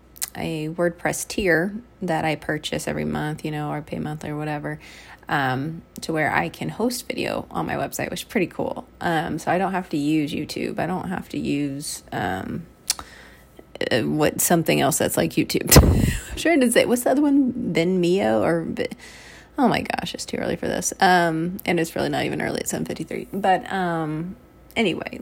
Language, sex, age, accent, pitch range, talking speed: English, female, 20-39, American, 160-205 Hz, 195 wpm